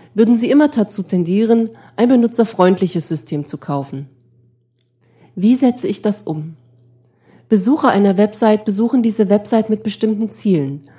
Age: 30-49